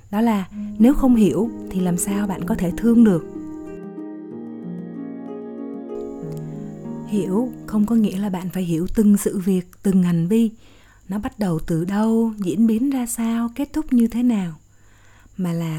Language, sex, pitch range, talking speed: Vietnamese, female, 165-225 Hz, 165 wpm